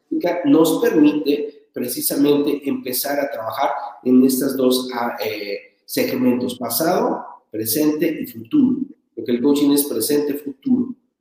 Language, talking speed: English, 105 wpm